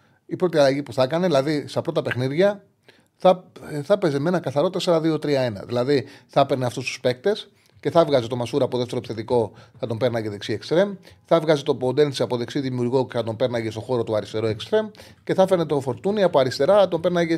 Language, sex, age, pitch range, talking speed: Greek, male, 30-49, 125-170 Hz, 210 wpm